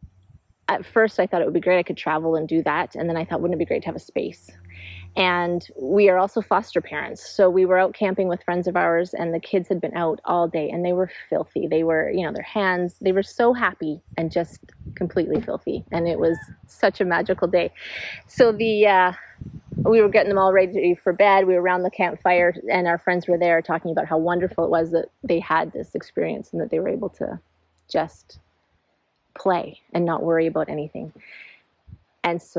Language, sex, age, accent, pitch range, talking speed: English, female, 30-49, American, 170-210 Hz, 225 wpm